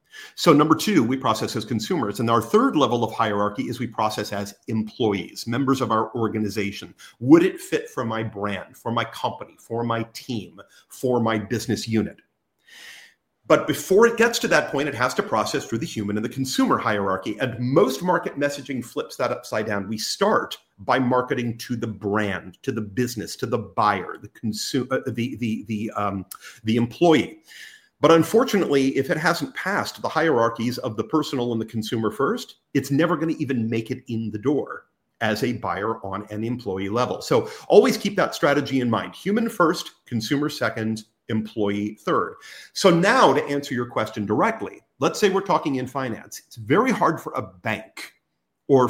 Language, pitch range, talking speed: English, 110-145 Hz, 185 wpm